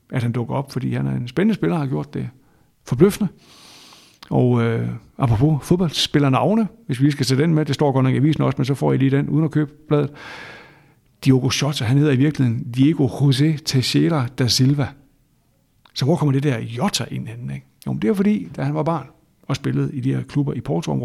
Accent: native